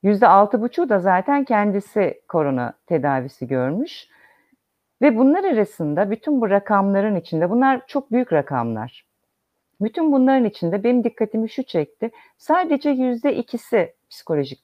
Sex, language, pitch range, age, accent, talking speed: female, Turkish, 160-235 Hz, 50-69, native, 115 wpm